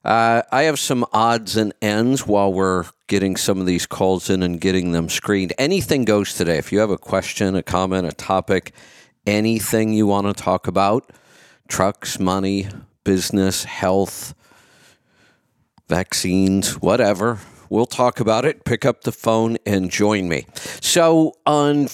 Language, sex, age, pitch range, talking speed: English, male, 50-69, 95-115 Hz, 155 wpm